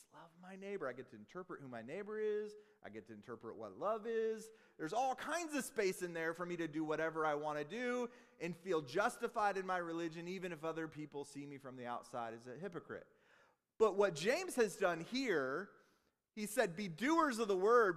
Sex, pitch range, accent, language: male, 170-235 Hz, American, English